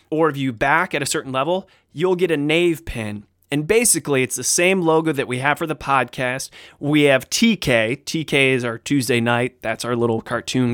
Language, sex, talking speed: English, male, 205 wpm